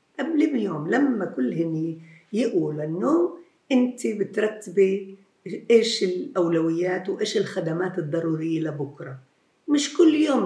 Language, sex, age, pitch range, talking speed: Arabic, female, 50-69, 175-275 Hz, 105 wpm